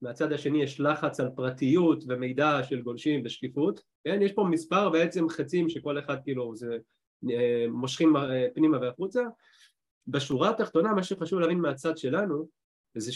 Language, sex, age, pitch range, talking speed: Hebrew, male, 30-49, 125-160 Hz, 130 wpm